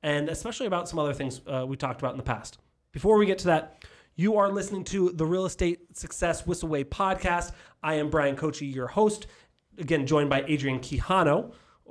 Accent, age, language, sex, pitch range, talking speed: American, 30-49, English, male, 140-180 Hz, 195 wpm